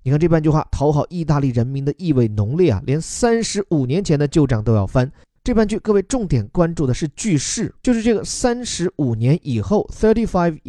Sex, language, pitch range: male, Chinese, 120-170 Hz